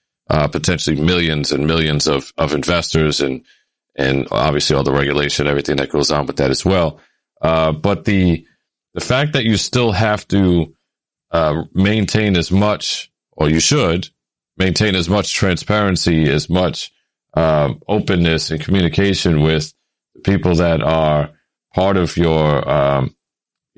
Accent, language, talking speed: American, English, 145 wpm